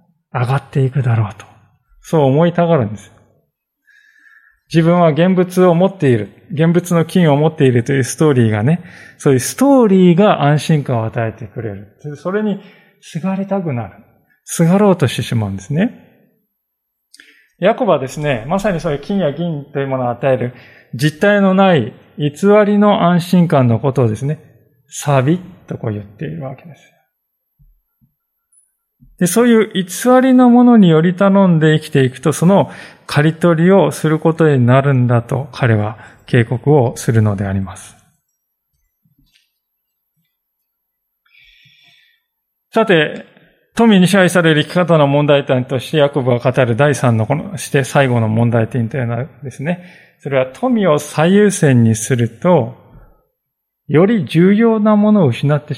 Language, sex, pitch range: Japanese, male, 130-185 Hz